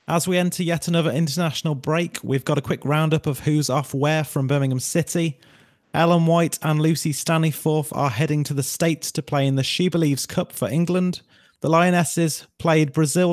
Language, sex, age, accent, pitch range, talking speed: English, male, 30-49, British, 140-170 Hz, 190 wpm